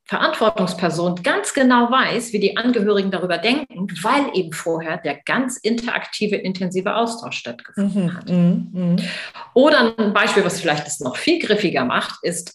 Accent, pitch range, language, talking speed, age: German, 175-235 Hz, German, 145 wpm, 40-59